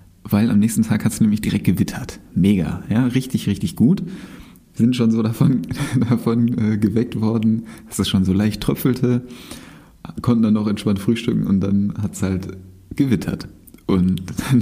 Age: 30-49